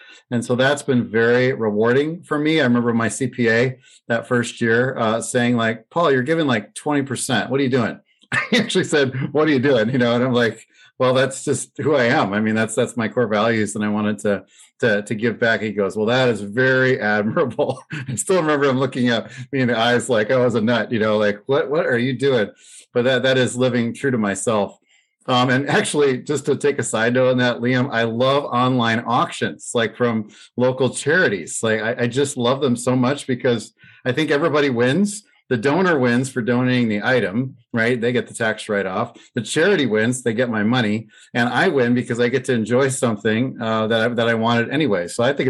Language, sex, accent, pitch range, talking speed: English, male, American, 115-130 Hz, 225 wpm